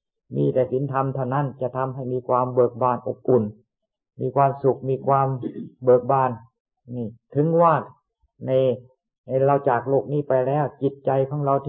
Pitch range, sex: 125-145 Hz, male